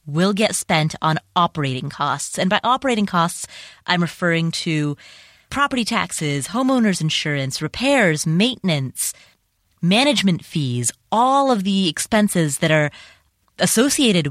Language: English